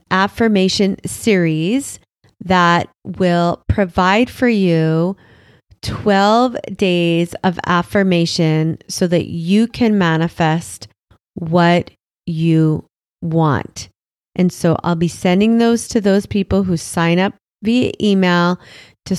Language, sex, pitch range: English, female, 170-200 Hz